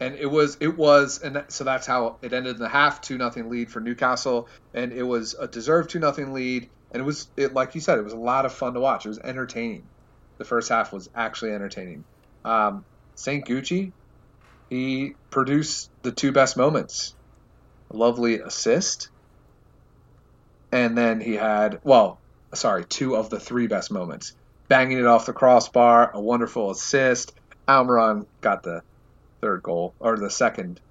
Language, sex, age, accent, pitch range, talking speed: English, male, 30-49, American, 115-140 Hz, 175 wpm